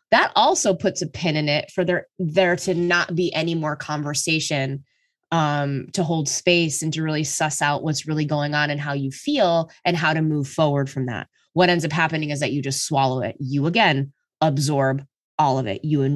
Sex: female